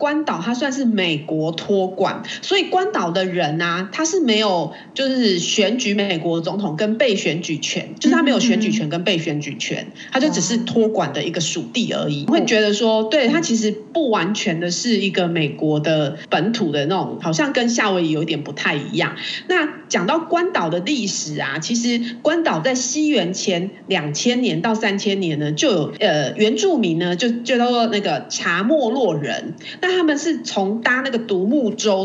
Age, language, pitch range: 30-49, Chinese, 180-250 Hz